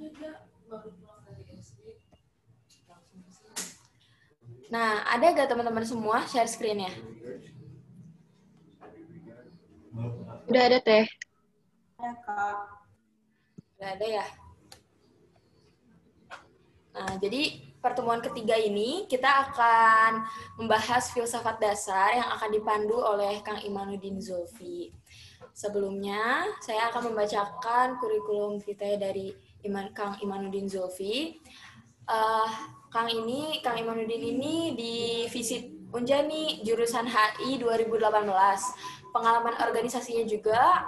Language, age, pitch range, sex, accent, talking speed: Indonesian, 20-39, 205-235 Hz, female, native, 80 wpm